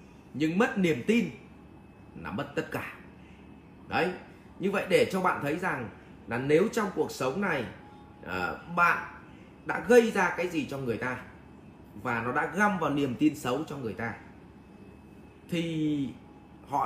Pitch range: 125-185 Hz